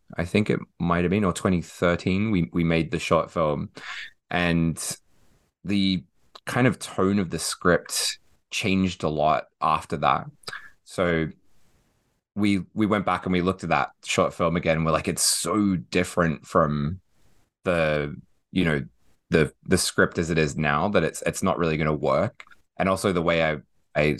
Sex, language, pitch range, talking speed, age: male, English, 75-95 Hz, 170 wpm, 20-39